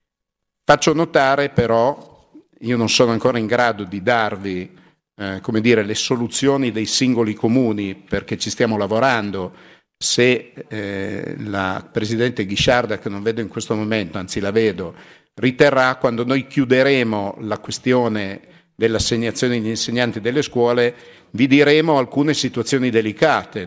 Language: Italian